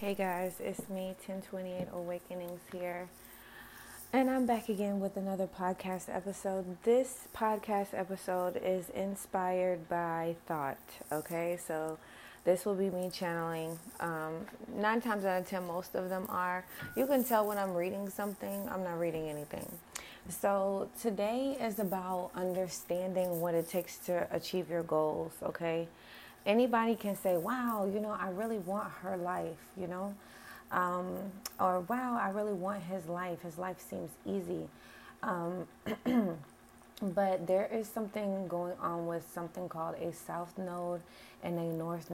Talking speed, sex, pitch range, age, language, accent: 150 wpm, female, 170-195 Hz, 20-39, English, American